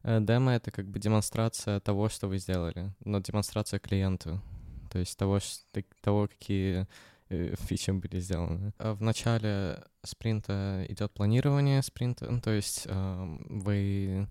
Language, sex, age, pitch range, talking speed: Russian, male, 20-39, 95-110 Hz, 125 wpm